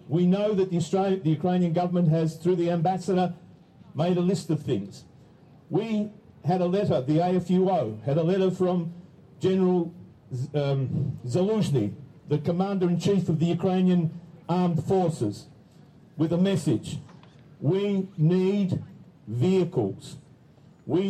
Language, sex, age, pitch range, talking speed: Ukrainian, male, 50-69, 150-190 Hz, 120 wpm